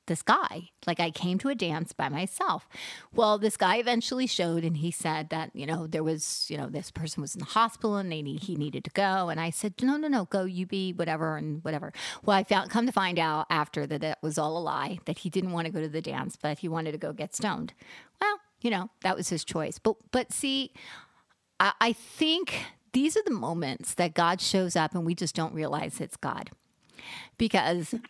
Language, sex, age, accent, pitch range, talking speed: English, female, 40-59, American, 165-220 Hz, 230 wpm